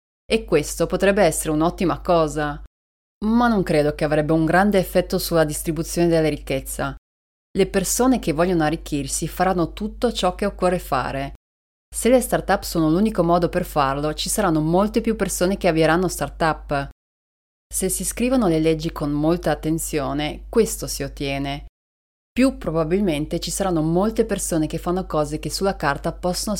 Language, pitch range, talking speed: Italian, 150-190 Hz, 155 wpm